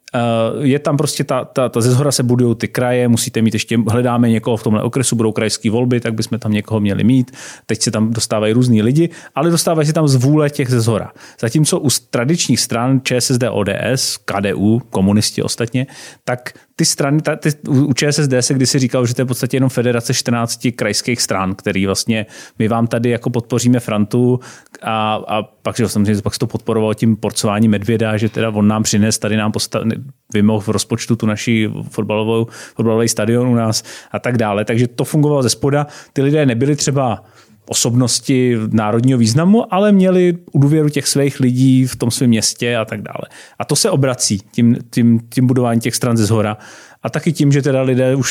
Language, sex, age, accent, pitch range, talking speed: Czech, male, 30-49, native, 110-135 Hz, 195 wpm